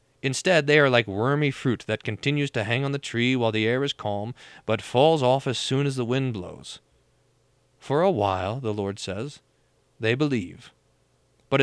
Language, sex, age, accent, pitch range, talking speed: English, male, 40-59, American, 110-150 Hz, 185 wpm